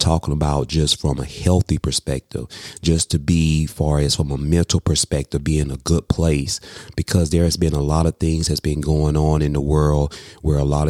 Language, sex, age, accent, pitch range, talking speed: English, male, 30-49, American, 75-85 Hz, 210 wpm